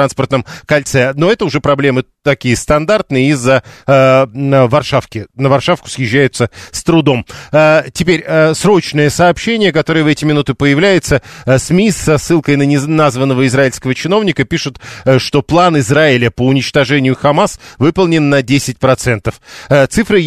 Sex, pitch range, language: male, 130-160 Hz, Russian